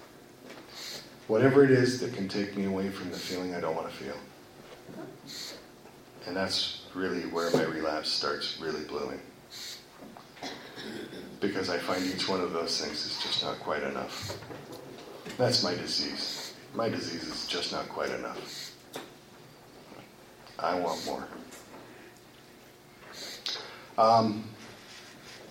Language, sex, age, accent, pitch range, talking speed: English, male, 40-59, American, 100-120 Hz, 120 wpm